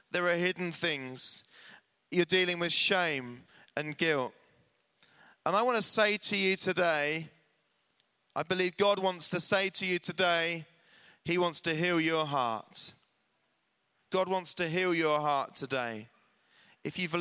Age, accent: 30-49, British